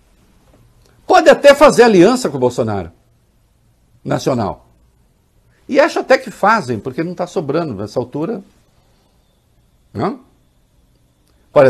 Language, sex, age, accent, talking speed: English, male, 60-79, Brazilian, 105 wpm